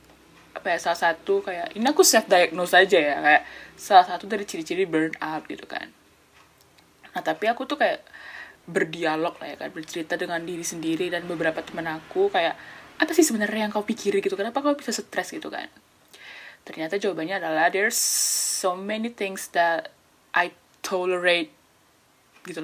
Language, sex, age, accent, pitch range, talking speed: Indonesian, female, 10-29, native, 180-250 Hz, 165 wpm